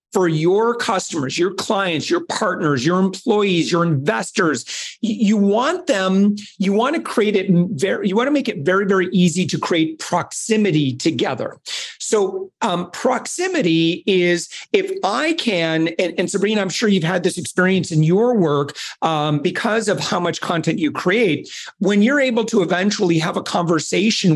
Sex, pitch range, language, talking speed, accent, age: male, 170-220 Hz, English, 165 wpm, American, 40-59